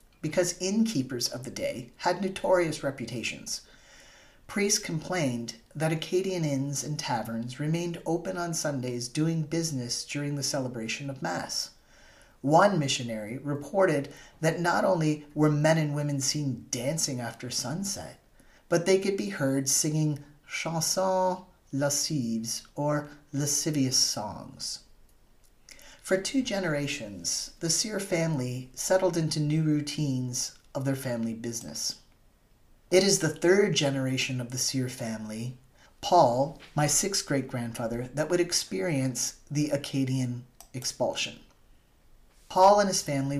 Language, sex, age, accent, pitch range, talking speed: English, male, 40-59, American, 130-165 Hz, 120 wpm